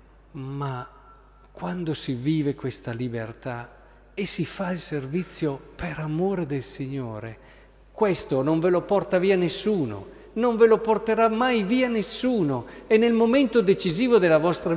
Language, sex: Italian, male